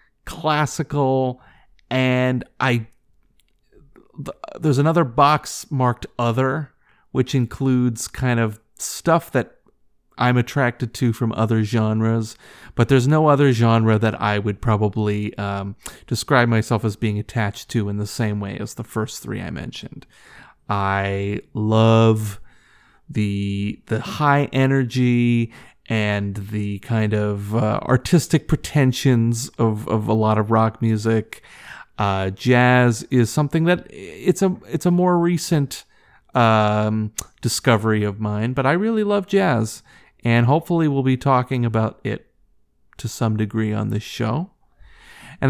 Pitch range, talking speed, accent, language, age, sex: 110-140 Hz, 135 wpm, American, English, 30-49, male